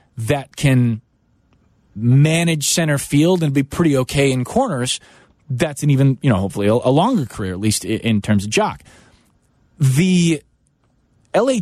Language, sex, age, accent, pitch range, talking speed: English, male, 30-49, American, 110-150 Hz, 145 wpm